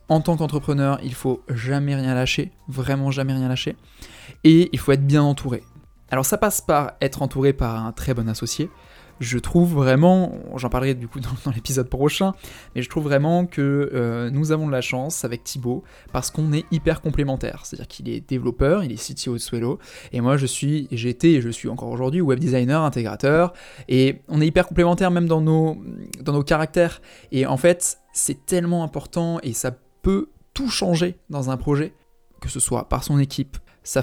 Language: French